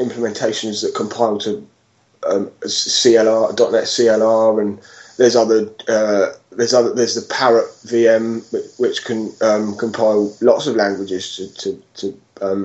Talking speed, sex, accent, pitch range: 140 wpm, male, British, 110-150 Hz